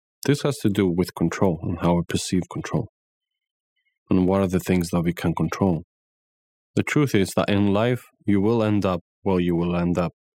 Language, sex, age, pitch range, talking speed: English, male, 20-39, 90-110 Hz, 205 wpm